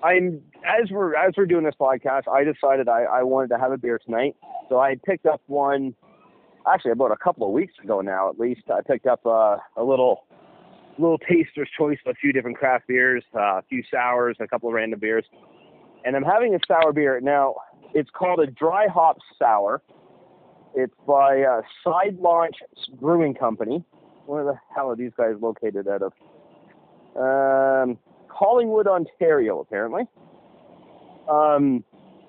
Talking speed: 170 wpm